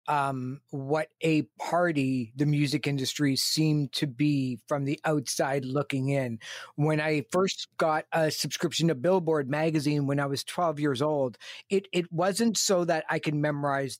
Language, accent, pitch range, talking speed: English, American, 145-165 Hz, 165 wpm